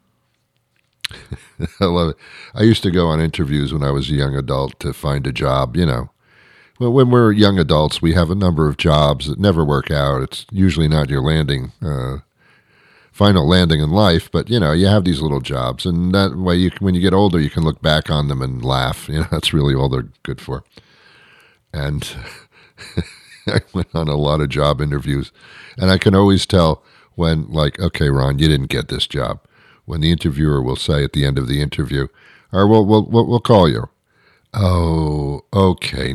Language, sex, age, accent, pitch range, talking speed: English, male, 50-69, American, 75-95 Hz, 200 wpm